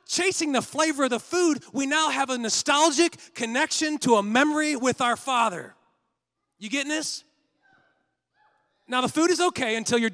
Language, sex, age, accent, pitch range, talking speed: English, male, 30-49, American, 160-245 Hz, 165 wpm